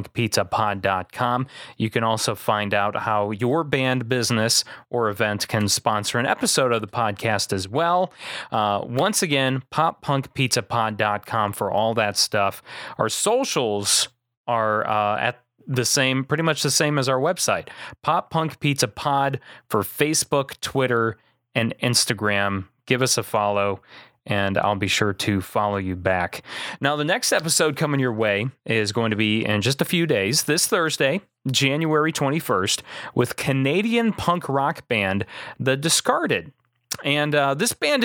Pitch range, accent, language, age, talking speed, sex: 105-150 Hz, American, English, 30-49, 150 wpm, male